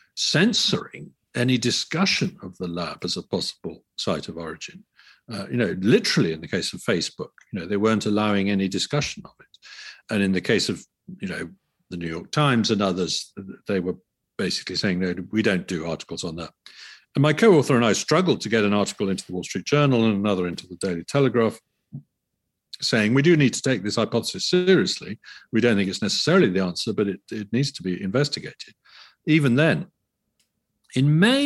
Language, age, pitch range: English, 50-69, 95-155 Hz